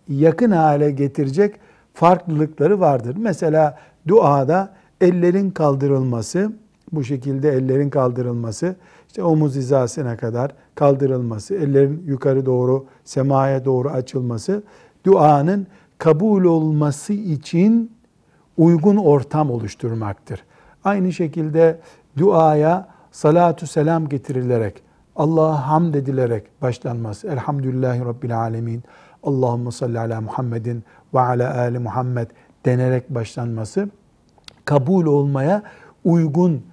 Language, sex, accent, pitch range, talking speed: Turkish, male, native, 125-170 Hz, 95 wpm